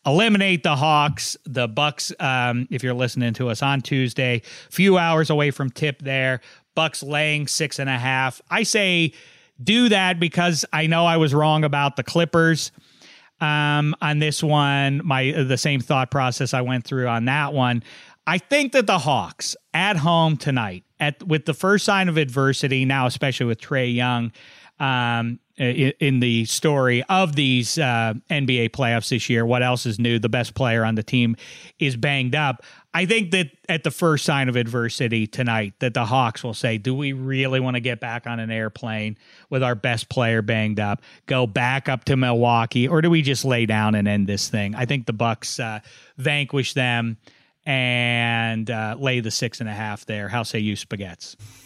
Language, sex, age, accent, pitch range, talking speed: English, male, 40-59, American, 120-150 Hz, 190 wpm